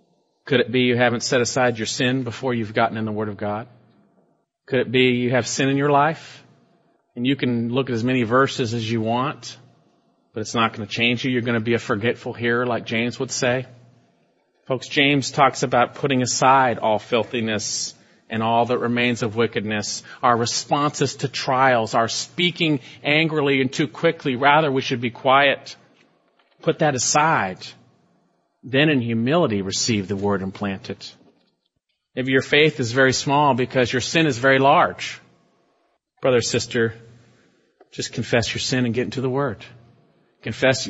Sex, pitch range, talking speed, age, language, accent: male, 115-130 Hz, 175 wpm, 40-59, English, American